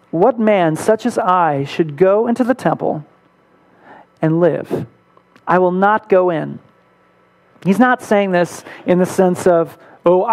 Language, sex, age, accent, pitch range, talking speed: English, male, 40-59, American, 160-205 Hz, 150 wpm